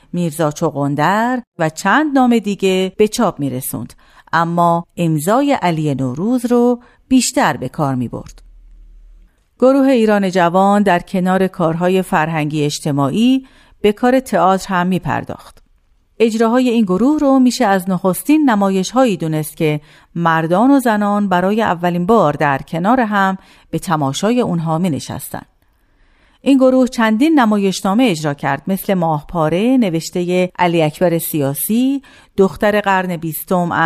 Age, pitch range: 40-59, 160-235 Hz